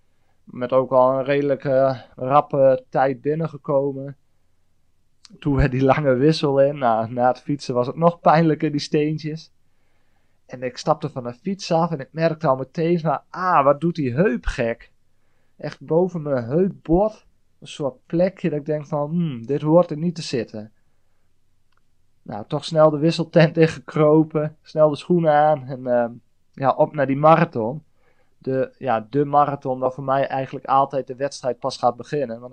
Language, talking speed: Dutch, 170 wpm